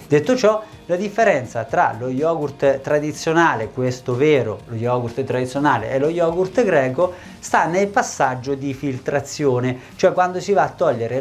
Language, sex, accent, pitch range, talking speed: Italian, male, native, 120-165 Hz, 145 wpm